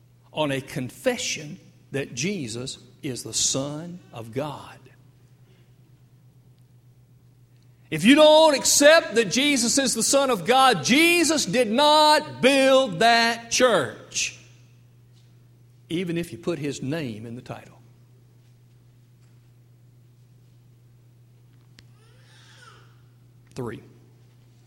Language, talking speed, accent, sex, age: English, 90 wpm, American, male, 60-79